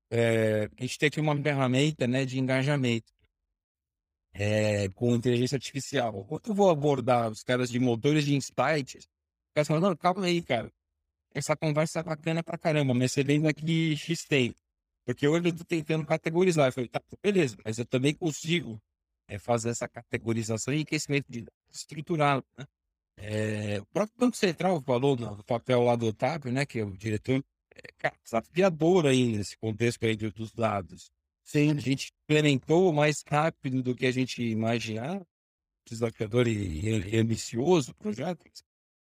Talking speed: 160 wpm